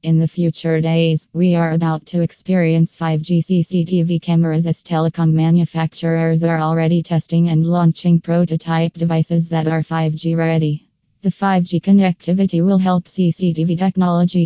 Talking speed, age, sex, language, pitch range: 135 wpm, 20-39, female, English, 160-175 Hz